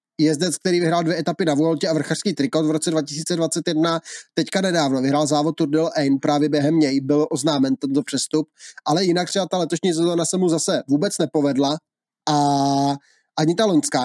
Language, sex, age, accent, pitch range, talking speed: Czech, male, 20-39, native, 145-165 Hz, 175 wpm